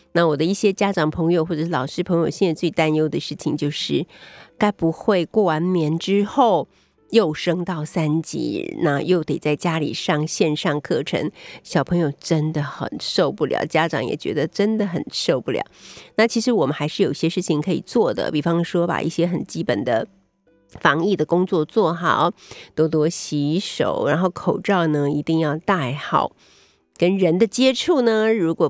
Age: 50-69